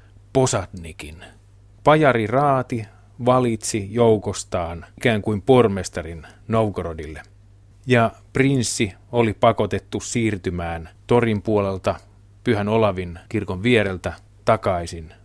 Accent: native